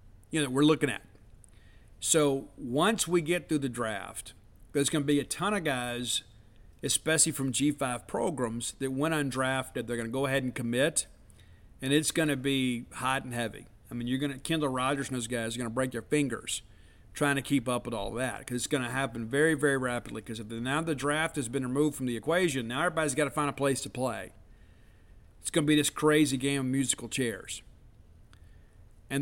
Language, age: English, 50-69